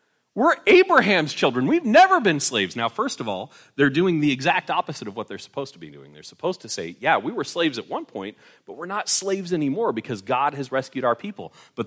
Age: 30-49